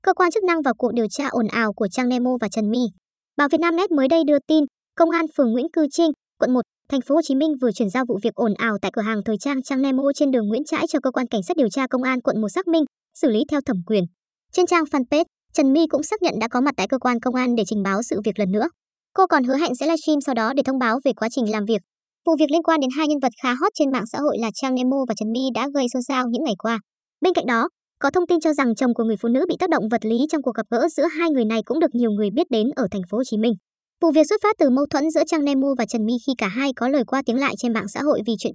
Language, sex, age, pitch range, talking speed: Vietnamese, male, 20-39, 230-305 Hz, 315 wpm